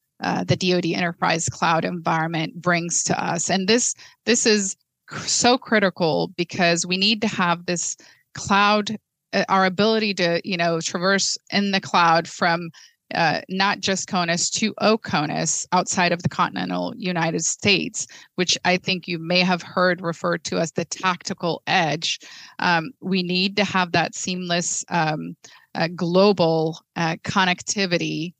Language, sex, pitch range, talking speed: English, female, 170-195 Hz, 150 wpm